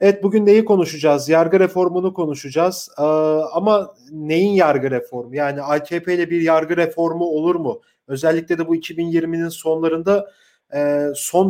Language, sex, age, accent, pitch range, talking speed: German, male, 40-59, Turkish, 150-195 Hz, 140 wpm